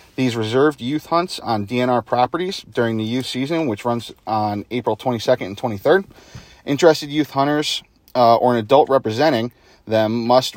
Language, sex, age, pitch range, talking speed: English, male, 30-49, 115-145 Hz, 160 wpm